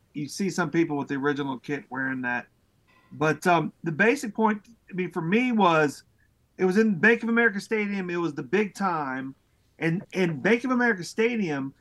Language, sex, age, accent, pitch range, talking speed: English, male, 40-59, American, 155-220 Hz, 185 wpm